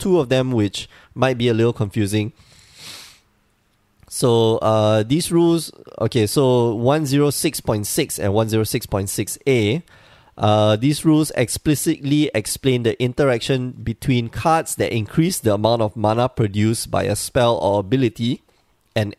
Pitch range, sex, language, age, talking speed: 105-130 Hz, male, English, 20-39, 120 wpm